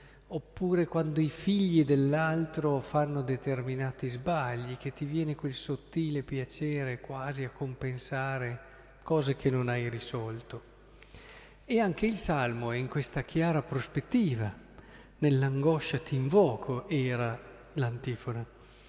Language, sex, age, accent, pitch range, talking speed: Italian, male, 50-69, native, 125-165 Hz, 115 wpm